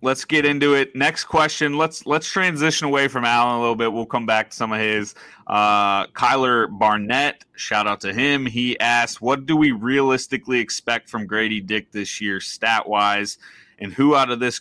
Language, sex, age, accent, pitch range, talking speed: English, male, 30-49, American, 105-120 Hz, 195 wpm